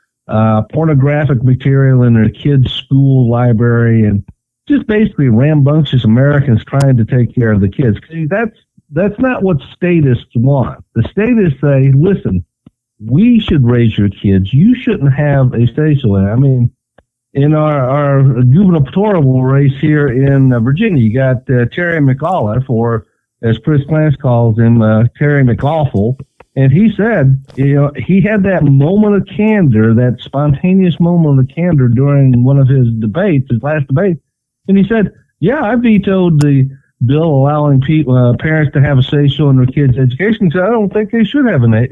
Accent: American